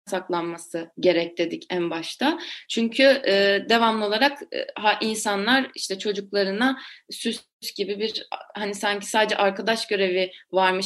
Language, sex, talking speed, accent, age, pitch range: Turkish, female, 120 wpm, native, 30-49, 190-230 Hz